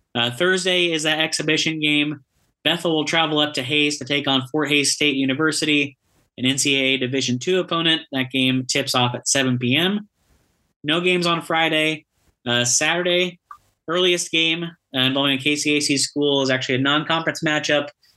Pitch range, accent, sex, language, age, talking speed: 130-155 Hz, American, male, English, 30-49, 160 wpm